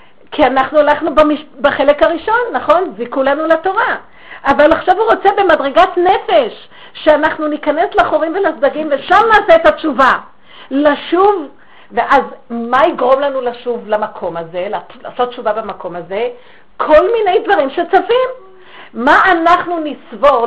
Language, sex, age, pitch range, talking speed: Hebrew, female, 50-69, 245-390 Hz, 125 wpm